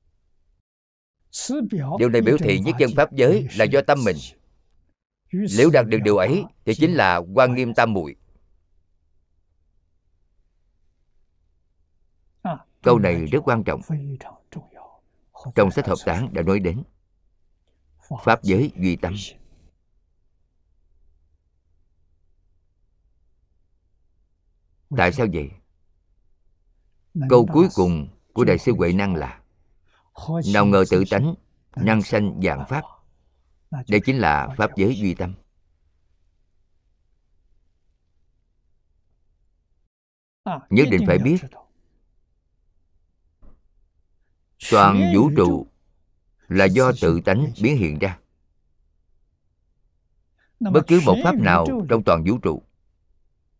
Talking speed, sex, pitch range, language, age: 100 wpm, male, 80-95 Hz, Vietnamese, 50-69